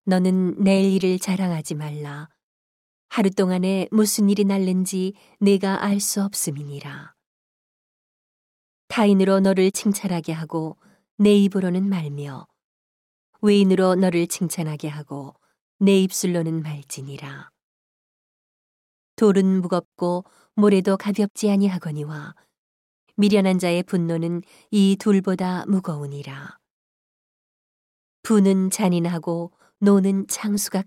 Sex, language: female, Korean